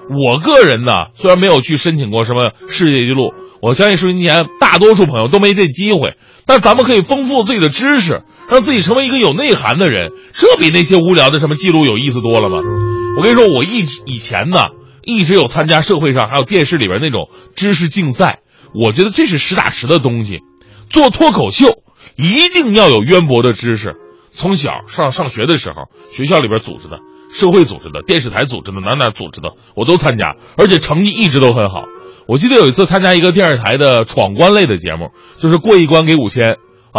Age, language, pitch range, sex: 30-49, Chinese, 115-195 Hz, male